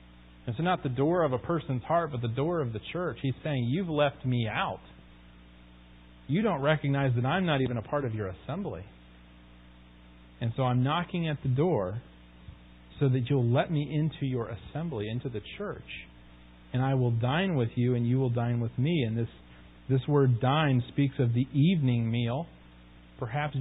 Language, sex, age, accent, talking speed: English, male, 40-59, American, 185 wpm